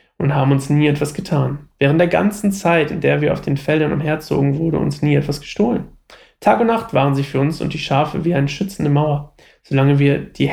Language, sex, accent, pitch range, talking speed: German, male, German, 145-190 Hz, 220 wpm